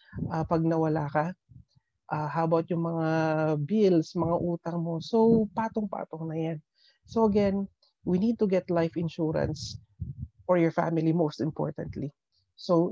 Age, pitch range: 40-59, 160-190 Hz